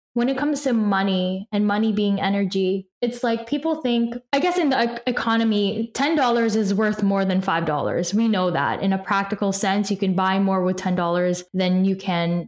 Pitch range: 190-230 Hz